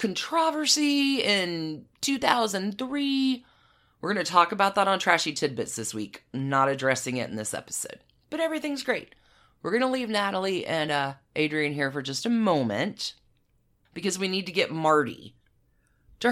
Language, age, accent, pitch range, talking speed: English, 30-49, American, 135-220 Hz, 160 wpm